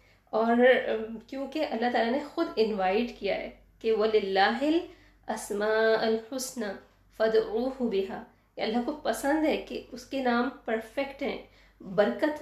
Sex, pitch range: female, 205-245 Hz